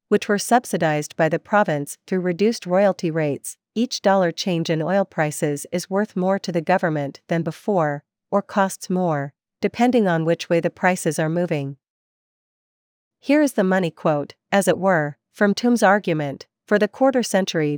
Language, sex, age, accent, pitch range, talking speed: English, female, 40-59, American, 160-205 Hz, 170 wpm